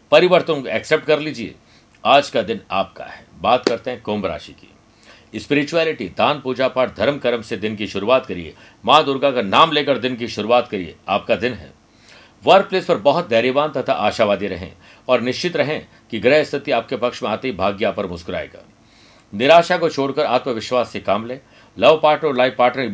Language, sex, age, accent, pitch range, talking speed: Hindi, male, 50-69, native, 115-145 Hz, 190 wpm